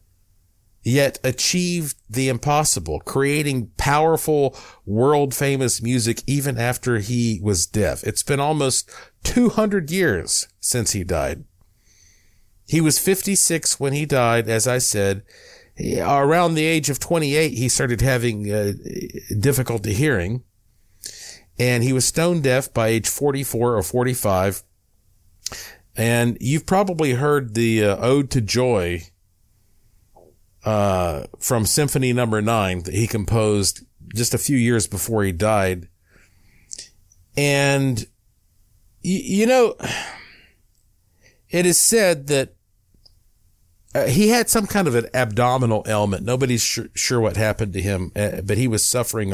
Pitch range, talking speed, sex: 95-135 Hz, 130 wpm, male